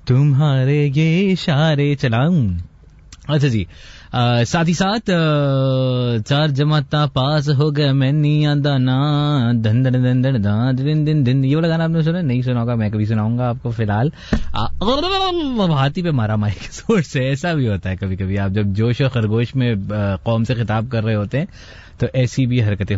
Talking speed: 170 wpm